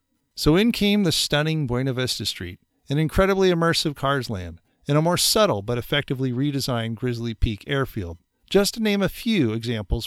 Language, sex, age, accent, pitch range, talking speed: English, male, 40-59, American, 105-150 Hz, 175 wpm